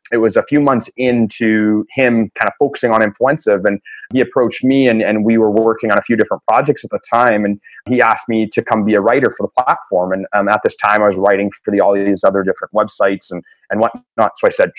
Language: English